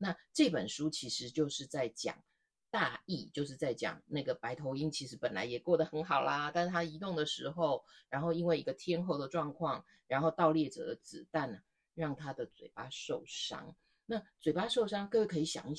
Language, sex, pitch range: Chinese, female, 145-175 Hz